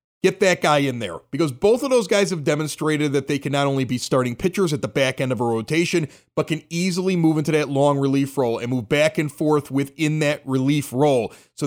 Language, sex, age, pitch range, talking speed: English, male, 30-49, 135-175 Hz, 235 wpm